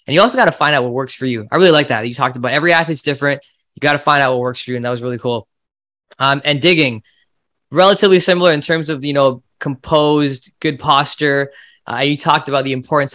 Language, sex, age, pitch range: English, male, 20-39, 130-165 Hz